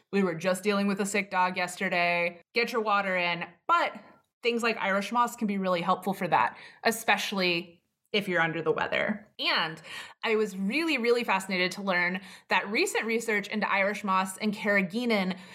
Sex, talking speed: female, 180 wpm